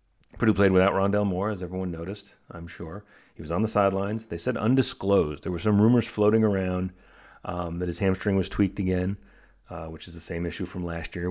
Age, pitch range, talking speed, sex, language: 30-49, 85-105 Hz, 210 wpm, male, English